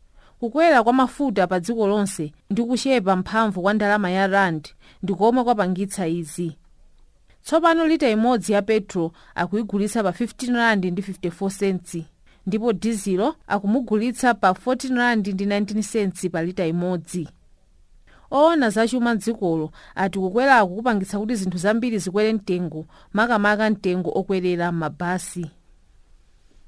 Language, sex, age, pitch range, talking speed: English, female, 40-59, 170-225 Hz, 120 wpm